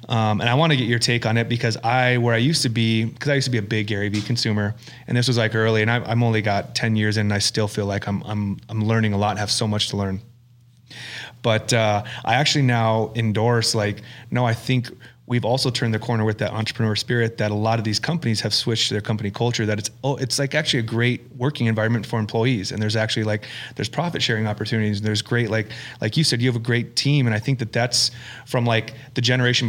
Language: English